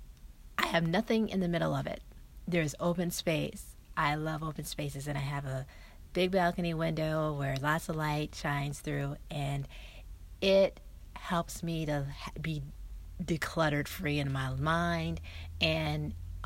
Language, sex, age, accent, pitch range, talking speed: English, female, 40-59, American, 110-170 Hz, 140 wpm